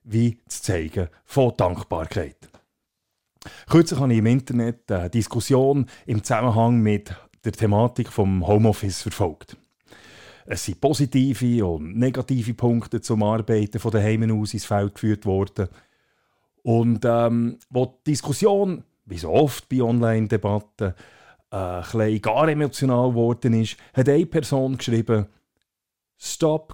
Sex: male